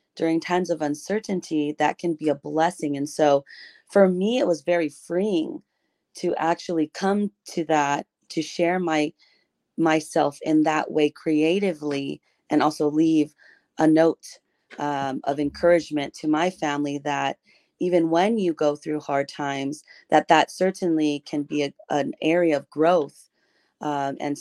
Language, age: English, 30-49